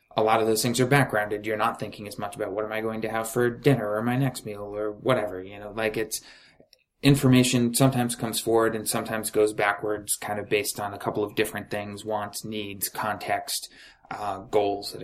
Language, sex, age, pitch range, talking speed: English, male, 20-39, 105-120 Hz, 215 wpm